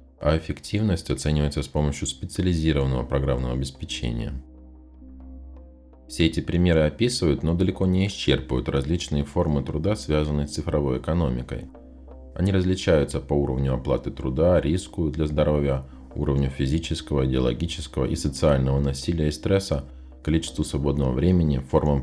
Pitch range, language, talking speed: 65-85 Hz, Russian, 120 wpm